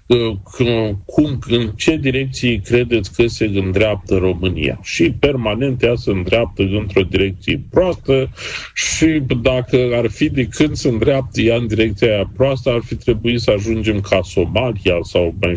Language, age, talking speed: Romanian, 50-69, 145 wpm